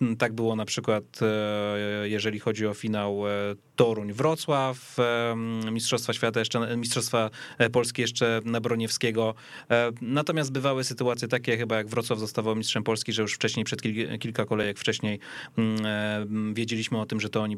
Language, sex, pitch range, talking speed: Polish, male, 115-145 Hz, 135 wpm